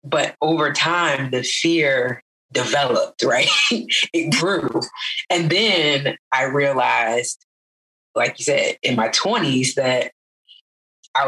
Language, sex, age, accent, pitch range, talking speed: English, female, 20-39, American, 130-175 Hz, 110 wpm